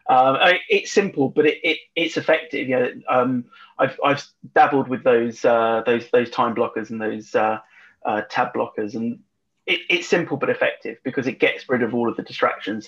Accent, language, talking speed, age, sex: British, English, 195 wpm, 30-49, male